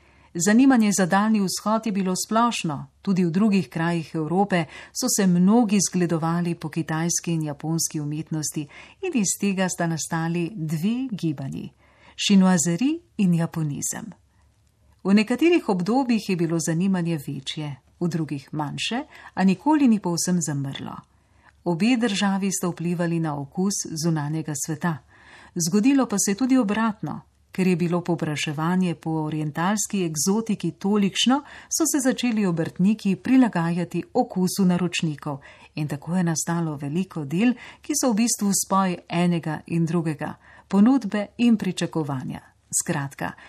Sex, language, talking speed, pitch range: female, Italian, 130 wpm, 160-210 Hz